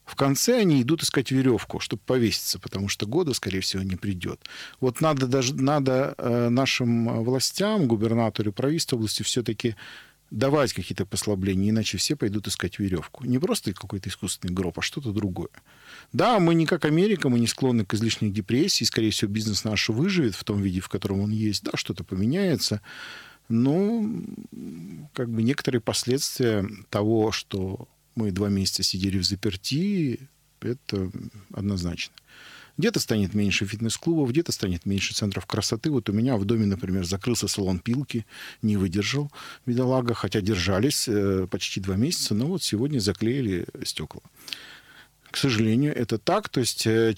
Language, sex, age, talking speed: Russian, male, 40-59, 150 wpm